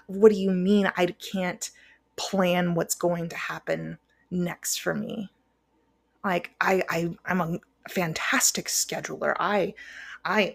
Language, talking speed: English, 130 wpm